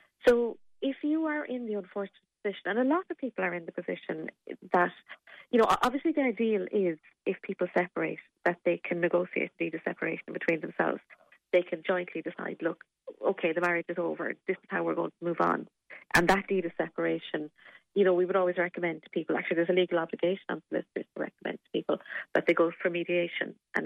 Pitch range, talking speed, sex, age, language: 170-195 Hz, 215 wpm, female, 30-49, English